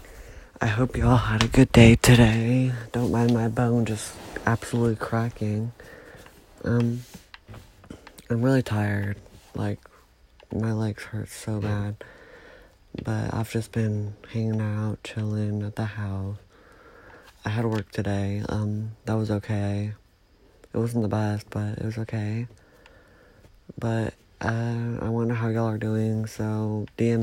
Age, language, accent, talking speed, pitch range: 30-49, English, American, 135 wpm, 105-115 Hz